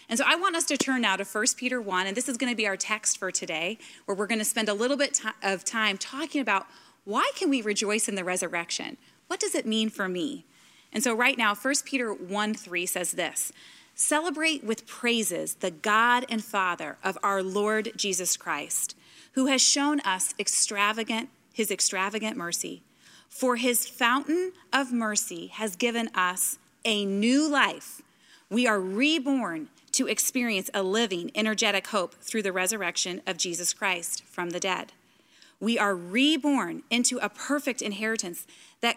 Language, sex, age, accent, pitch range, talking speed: English, female, 30-49, American, 195-260 Hz, 175 wpm